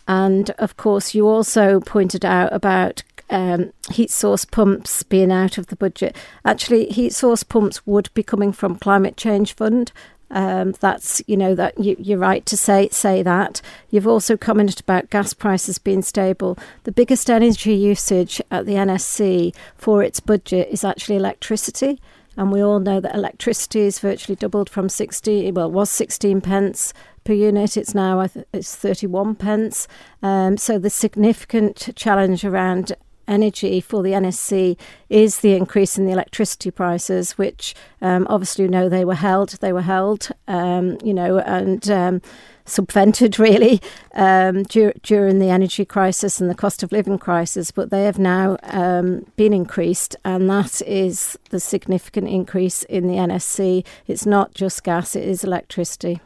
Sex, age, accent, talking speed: female, 50-69, British, 165 wpm